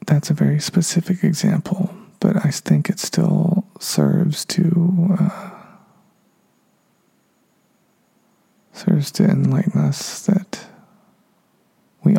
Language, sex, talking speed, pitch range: English, male, 95 wpm, 170-205 Hz